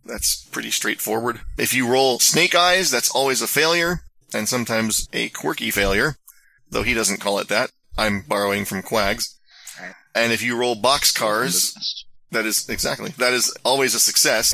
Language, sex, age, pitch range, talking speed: English, male, 30-49, 105-125 Hz, 170 wpm